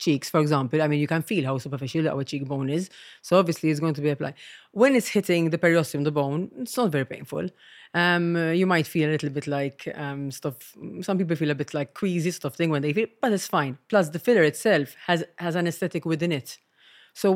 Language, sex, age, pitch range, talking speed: English, female, 30-49, 155-185 Hz, 240 wpm